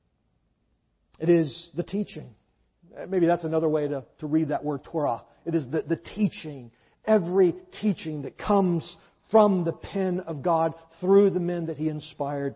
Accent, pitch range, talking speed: American, 150-210 Hz, 160 wpm